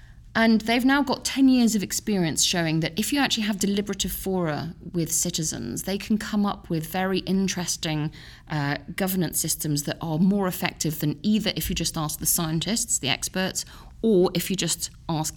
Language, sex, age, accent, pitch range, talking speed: English, female, 30-49, British, 160-195 Hz, 185 wpm